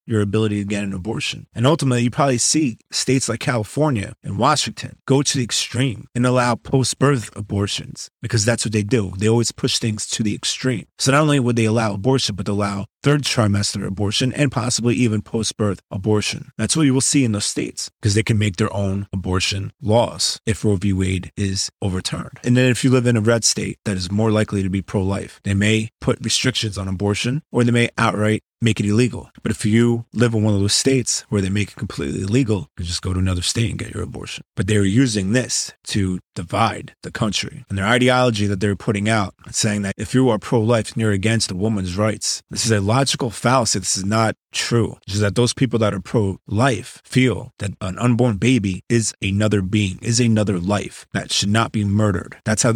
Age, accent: 30-49, American